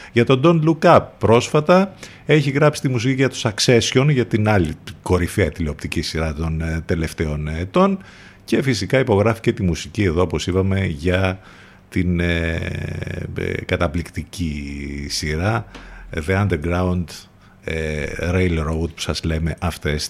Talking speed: 135 wpm